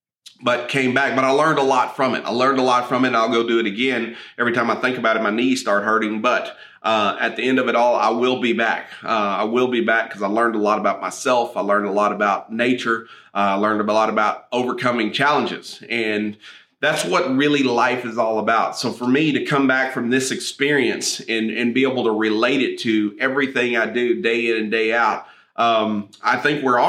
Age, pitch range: 30-49, 105-125 Hz